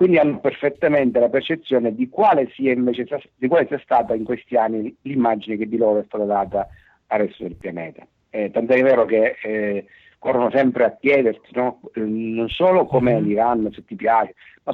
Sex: male